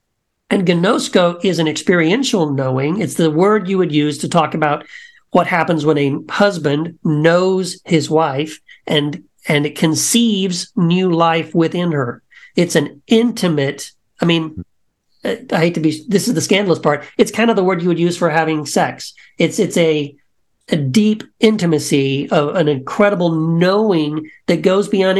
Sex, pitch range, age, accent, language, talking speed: male, 155-200 Hz, 50-69, American, English, 165 wpm